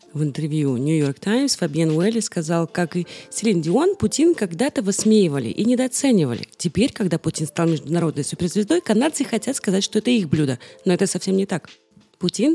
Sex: female